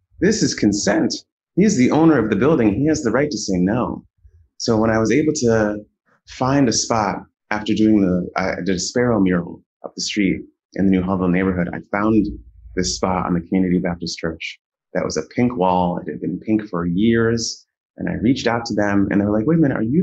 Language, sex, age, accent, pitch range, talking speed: English, male, 30-49, American, 90-115 Hz, 230 wpm